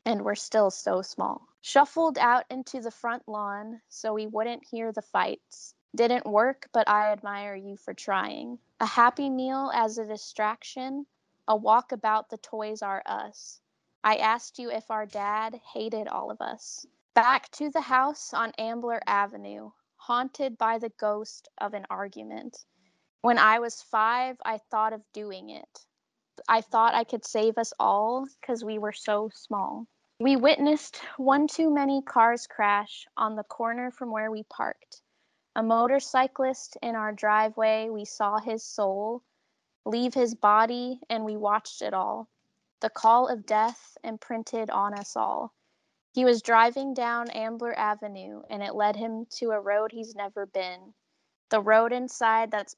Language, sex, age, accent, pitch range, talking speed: English, female, 20-39, American, 210-245 Hz, 160 wpm